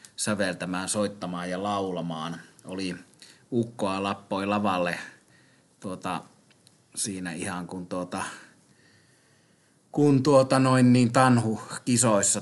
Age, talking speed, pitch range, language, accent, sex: 30-49, 85 wpm, 90-110 Hz, Finnish, native, male